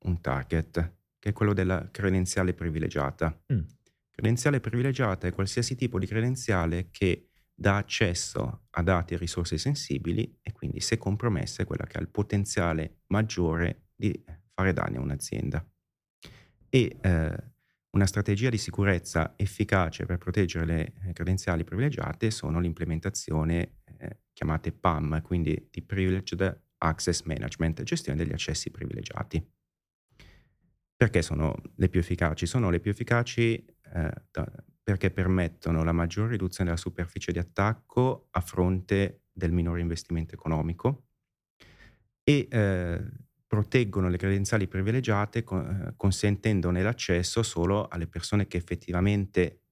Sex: male